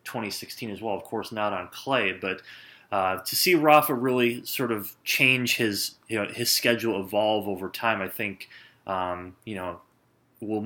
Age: 20-39